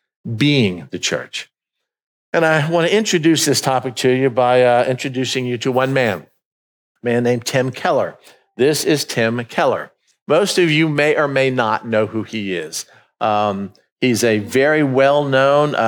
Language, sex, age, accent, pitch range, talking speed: English, male, 50-69, American, 115-135 Hz, 165 wpm